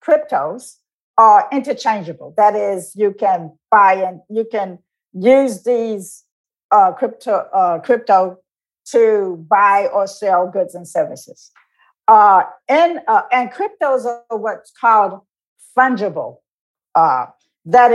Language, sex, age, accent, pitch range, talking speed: English, female, 50-69, American, 205-275 Hz, 115 wpm